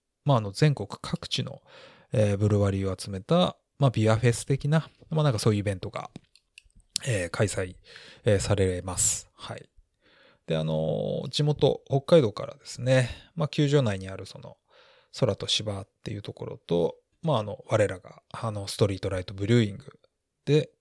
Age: 20-39